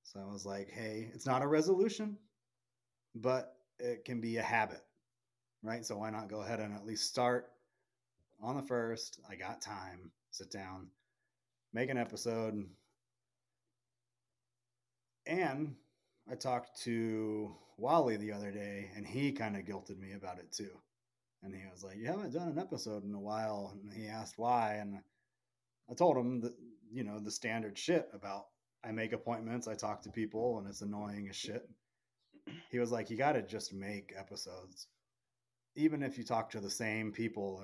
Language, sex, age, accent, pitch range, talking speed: English, male, 30-49, American, 105-120 Hz, 175 wpm